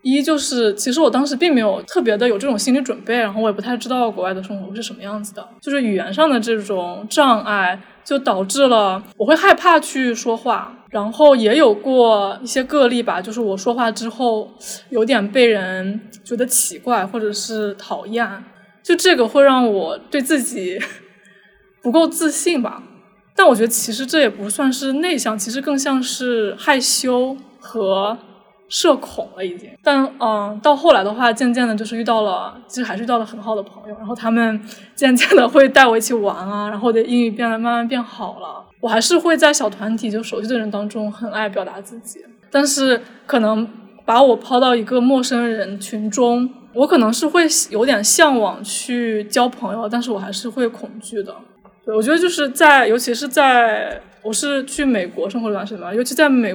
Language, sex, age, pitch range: Chinese, female, 20-39, 215-265 Hz